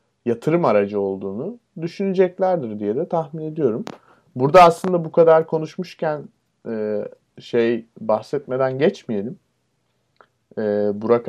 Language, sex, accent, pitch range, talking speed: Turkish, male, native, 105-125 Hz, 90 wpm